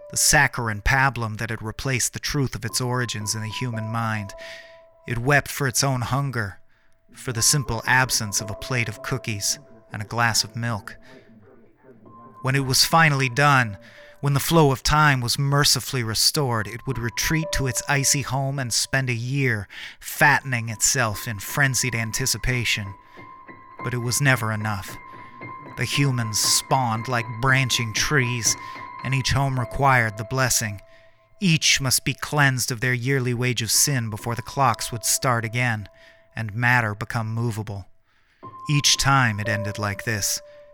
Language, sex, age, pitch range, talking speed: English, male, 30-49, 110-135 Hz, 160 wpm